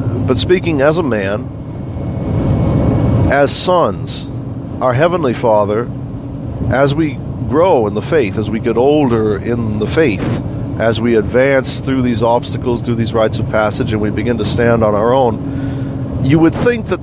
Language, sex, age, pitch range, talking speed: English, male, 50-69, 110-135 Hz, 160 wpm